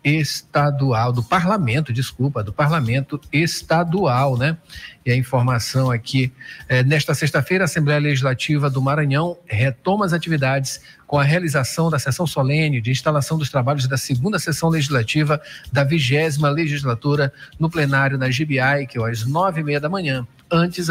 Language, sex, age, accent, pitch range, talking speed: Portuguese, male, 50-69, Brazilian, 130-160 Hz, 155 wpm